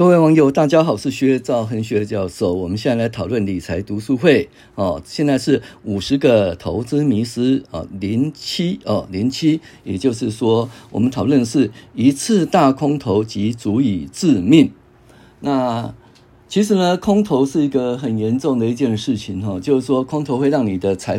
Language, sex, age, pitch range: Chinese, male, 50-69, 105-145 Hz